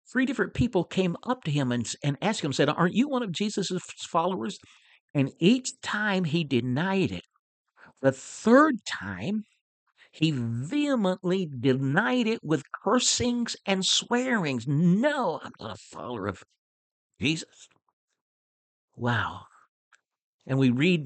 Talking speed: 130 wpm